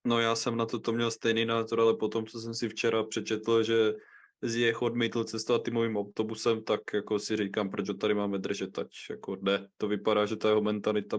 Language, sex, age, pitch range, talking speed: Czech, male, 20-39, 105-115 Hz, 205 wpm